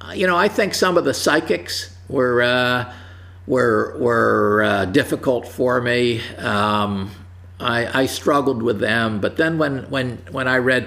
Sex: male